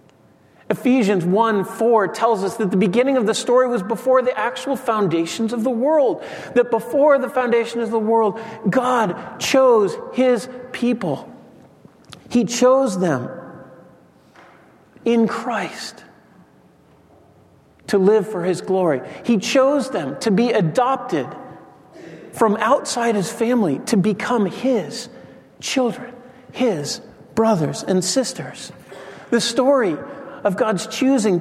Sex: male